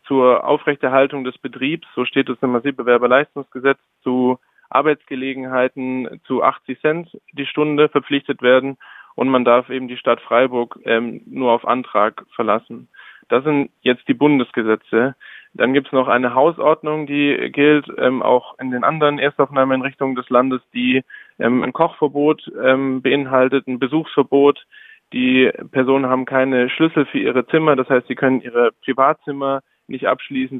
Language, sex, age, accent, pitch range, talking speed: German, male, 20-39, German, 125-140 Hz, 150 wpm